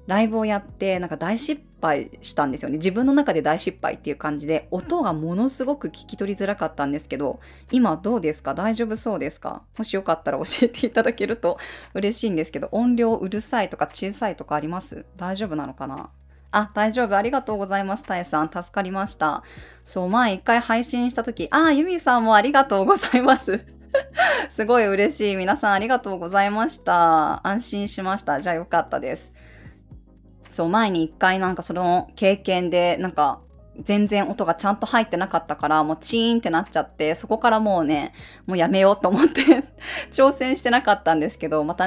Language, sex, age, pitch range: Japanese, female, 20-39, 165-230 Hz